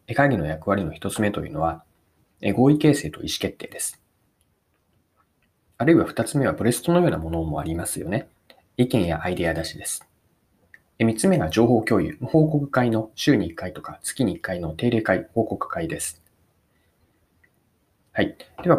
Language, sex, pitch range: Japanese, male, 85-135 Hz